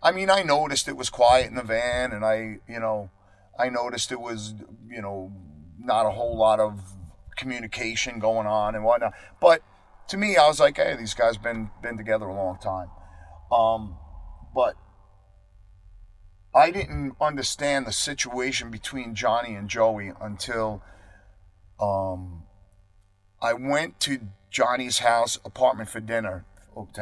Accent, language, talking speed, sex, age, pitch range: American, English, 150 wpm, male, 40-59, 95-120 Hz